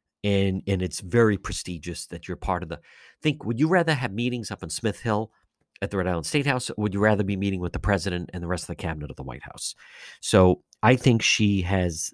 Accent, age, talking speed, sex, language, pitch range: American, 50-69, 240 wpm, male, English, 90-125 Hz